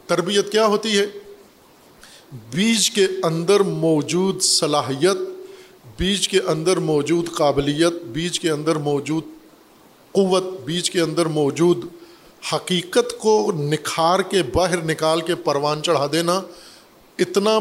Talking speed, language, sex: 115 wpm, Urdu, male